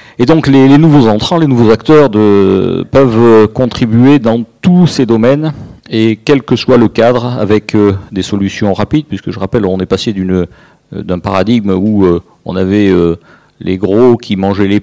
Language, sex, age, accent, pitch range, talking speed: French, male, 50-69, French, 100-125 Hz, 185 wpm